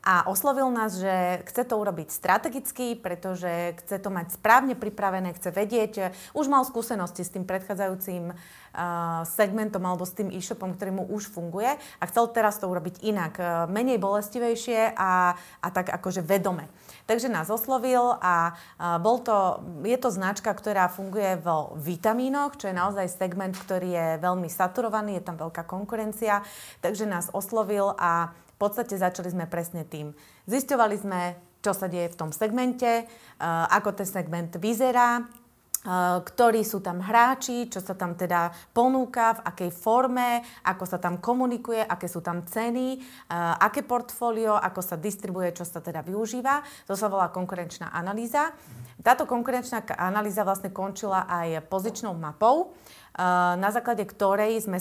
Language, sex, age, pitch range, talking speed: Slovak, female, 30-49, 180-230 Hz, 150 wpm